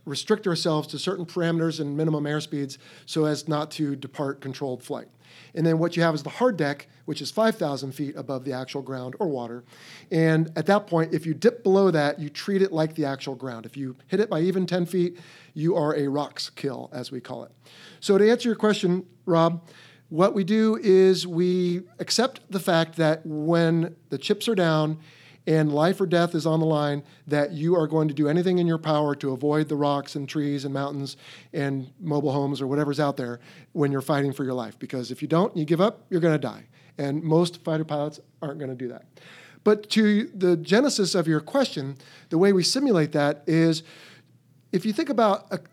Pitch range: 145-180 Hz